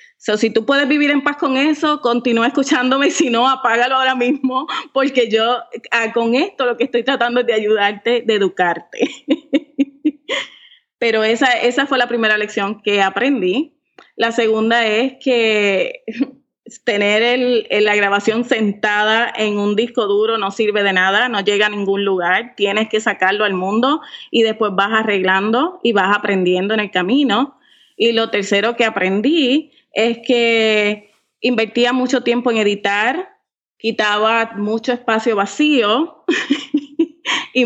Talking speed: 145 wpm